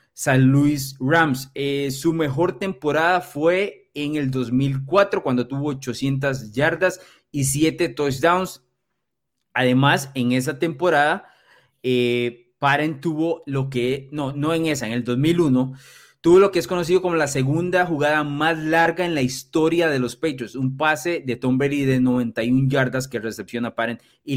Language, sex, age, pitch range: Spanish, male, 30-49, 125-160 Hz